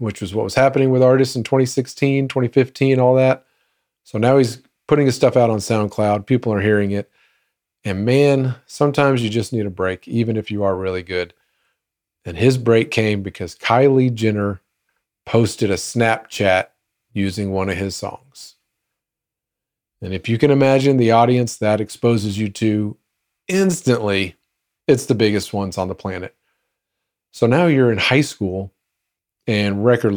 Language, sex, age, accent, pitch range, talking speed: English, male, 40-59, American, 100-130 Hz, 160 wpm